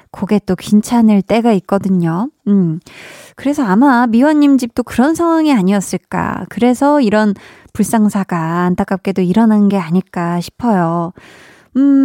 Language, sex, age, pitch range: Korean, female, 20-39, 190-270 Hz